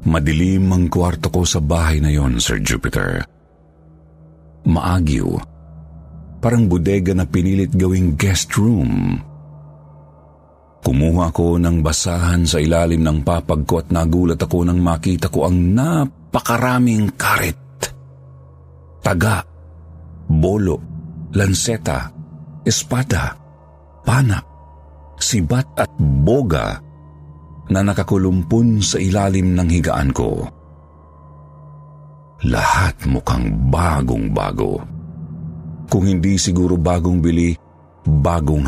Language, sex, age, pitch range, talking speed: Filipino, male, 50-69, 75-95 Hz, 90 wpm